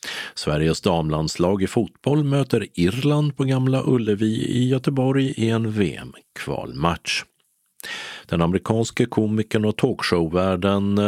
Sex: male